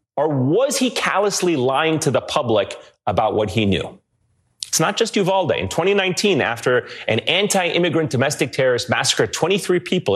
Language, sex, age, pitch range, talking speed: English, male, 30-49, 115-180 Hz, 155 wpm